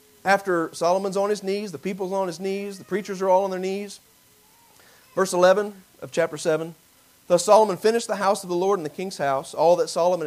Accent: American